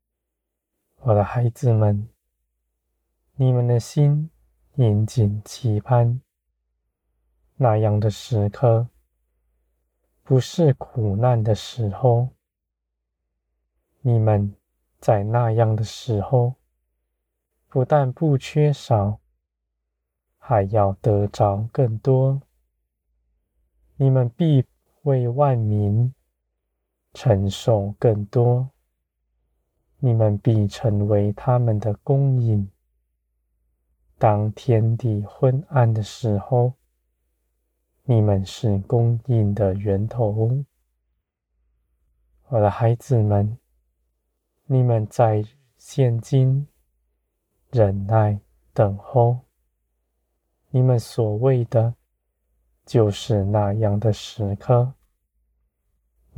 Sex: male